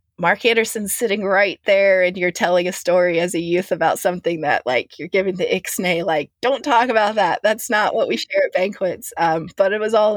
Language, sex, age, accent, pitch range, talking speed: English, female, 30-49, American, 155-180 Hz, 225 wpm